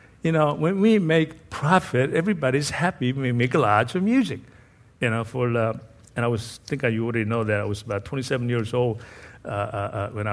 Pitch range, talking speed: 105-135 Hz, 210 wpm